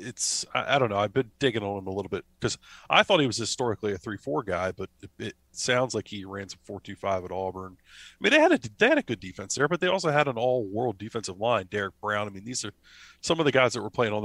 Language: English